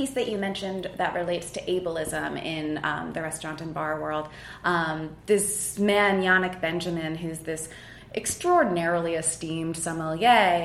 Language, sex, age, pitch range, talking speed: English, female, 20-39, 165-220 Hz, 140 wpm